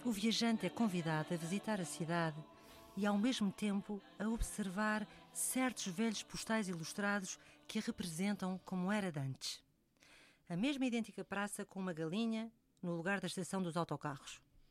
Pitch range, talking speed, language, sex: 180-250 Hz, 150 wpm, Portuguese, female